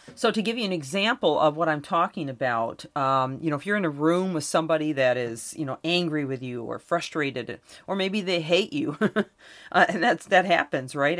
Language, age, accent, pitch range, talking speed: English, 40-59, American, 155-205 Hz, 220 wpm